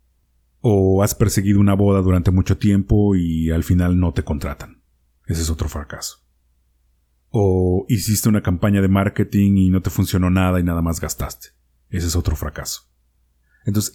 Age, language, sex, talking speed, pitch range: 30-49, Spanish, male, 165 wpm, 75-105 Hz